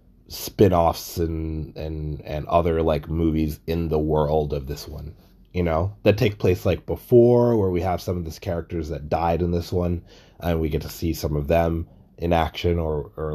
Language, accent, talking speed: English, American, 200 wpm